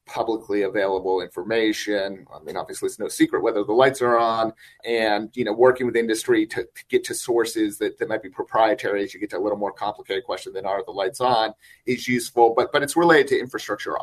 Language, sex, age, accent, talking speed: English, male, 30-49, American, 220 wpm